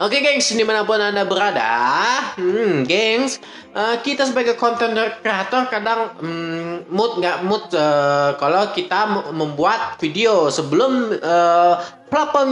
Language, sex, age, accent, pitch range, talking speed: Indonesian, male, 20-39, native, 175-245 Hz, 130 wpm